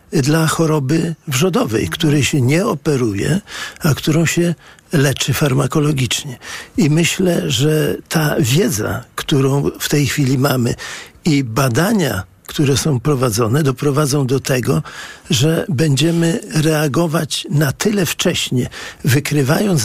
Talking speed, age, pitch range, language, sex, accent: 110 wpm, 50-69, 135-160 Hz, Polish, male, native